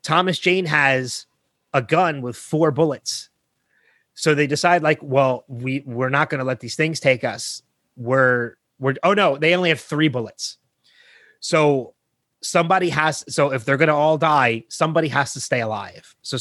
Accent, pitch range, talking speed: American, 135-170 Hz, 175 wpm